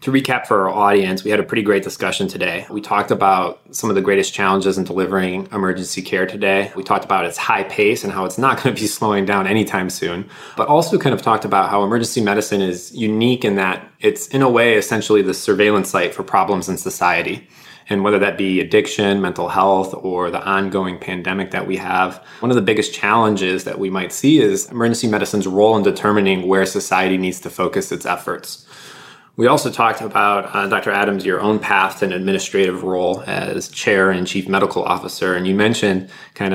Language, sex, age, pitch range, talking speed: English, male, 20-39, 95-105 Hz, 205 wpm